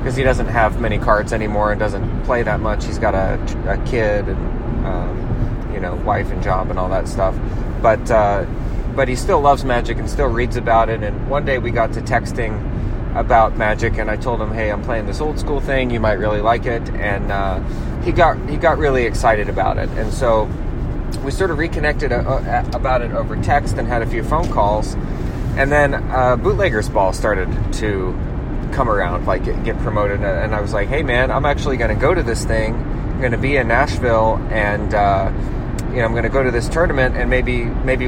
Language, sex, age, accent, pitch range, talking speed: English, male, 30-49, American, 105-125 Hz, 215 wpm